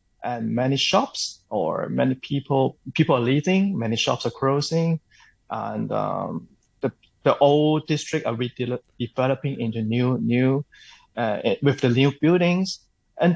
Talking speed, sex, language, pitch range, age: 140 wpm, male, English, 125-160 Hz, 20-39